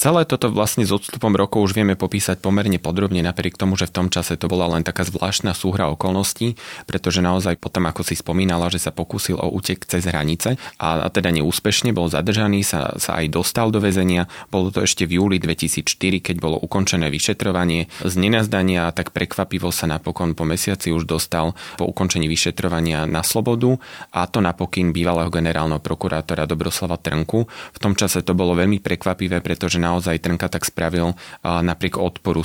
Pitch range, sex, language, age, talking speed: 80-95 Hz, male, Slovak, 30-49, 180 wpm